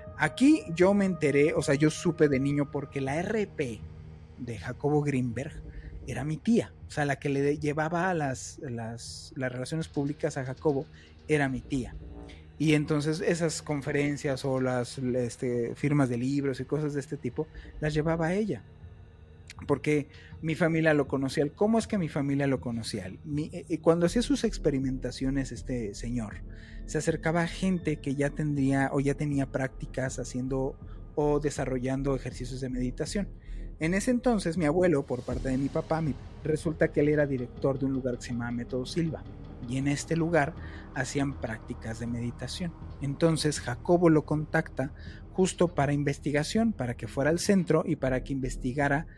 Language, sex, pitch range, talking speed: Spanish, male, 125-155 Hz, 165 wpm